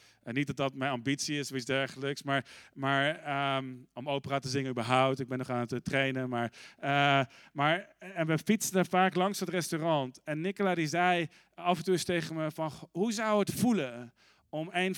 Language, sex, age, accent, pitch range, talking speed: Dutch, male, 40-59, Dutch, 135-170 Hz, 190 wpm